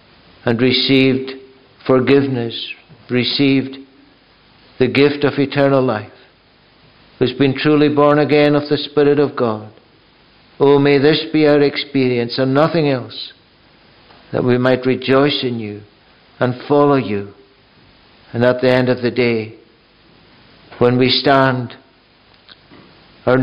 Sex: male